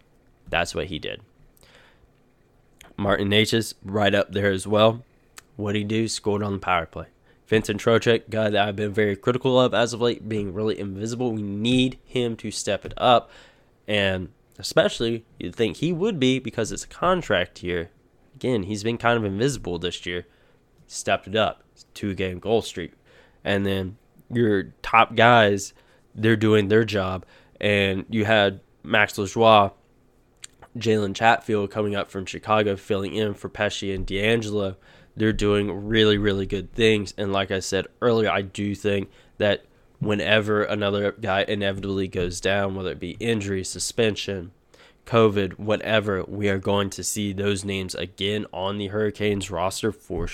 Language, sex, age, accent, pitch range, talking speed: English, male, 20-39, American, 95-115 Hz, 160 wpm